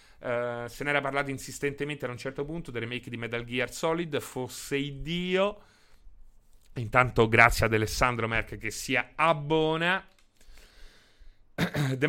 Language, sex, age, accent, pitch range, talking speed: Italian, male, 30-49, native, 115-150 Hz, 140 wpm